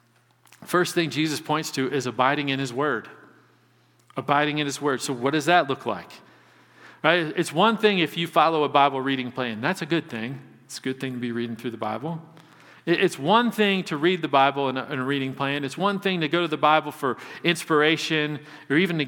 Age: 40-59